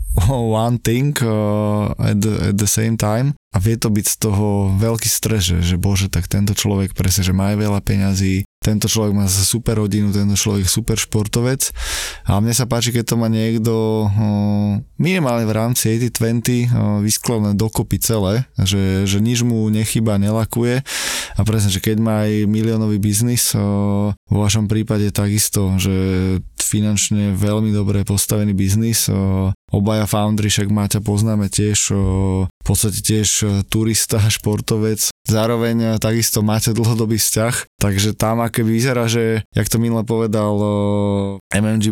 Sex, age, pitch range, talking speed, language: male, 20-39, 100-115 Hz, 150 wpm, Slovak